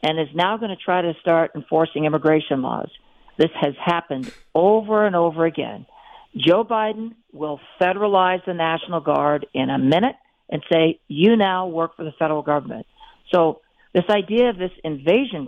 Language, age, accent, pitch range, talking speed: English, 60-79, American, 155-200 Hz, 165 wpm